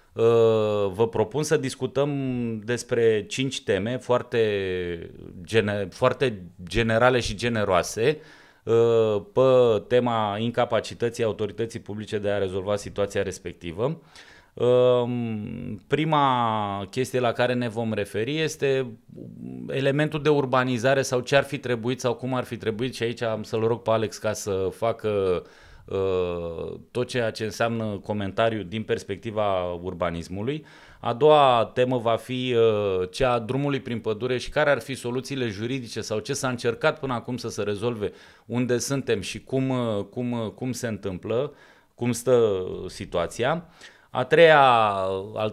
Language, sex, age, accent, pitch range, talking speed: Romanian, male, 30-49, native, 105-125 Hz, 130 wpm